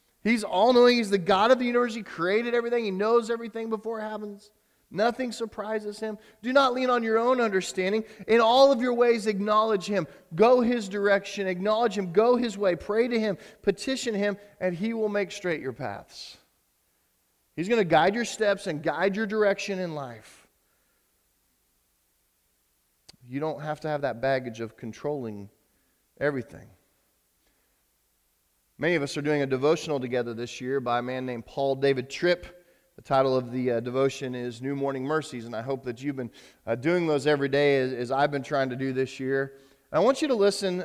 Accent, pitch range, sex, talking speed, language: American, 135-210 Hz, male, 190 wpm, English